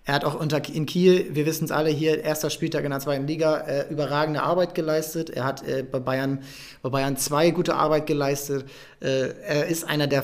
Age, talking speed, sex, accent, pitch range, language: 30-49, 215 wpm, male, German, 145-175 Hz, German